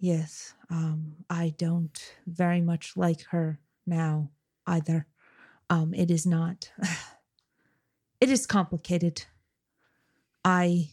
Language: English